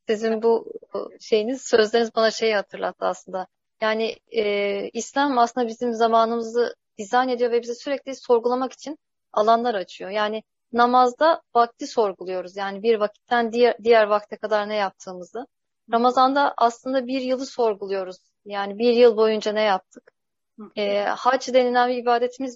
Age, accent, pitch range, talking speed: 30-49, native, 215-250 Hz, 135 wpm